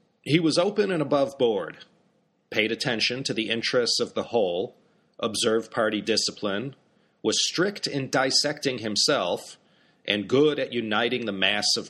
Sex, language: male, English